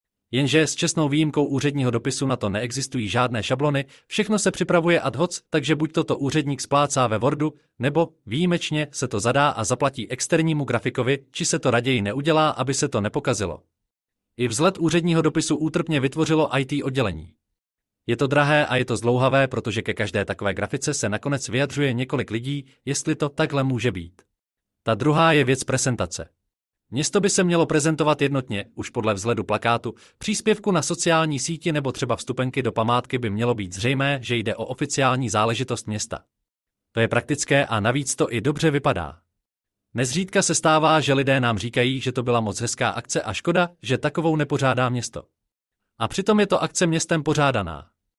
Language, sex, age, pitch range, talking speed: Czech, male, 30-49, 115-155 Hz, 175 wpm